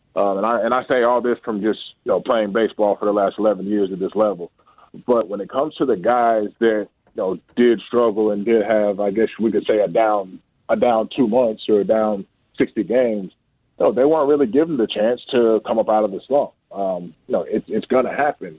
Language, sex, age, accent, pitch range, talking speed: English, male, 20-39, American, 100-115 Hz, 235 wpm